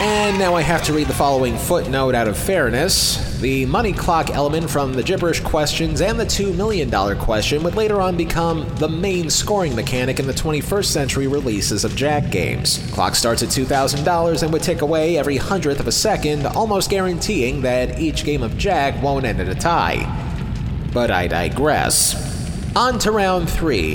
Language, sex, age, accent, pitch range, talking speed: English, male, 30-49, American, 125-180 Hz, 185 wpm